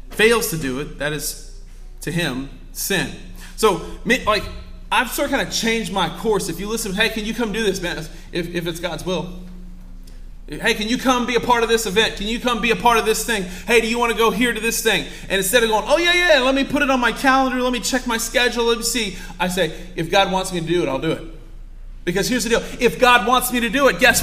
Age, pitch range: 30-49, 175-240 Hz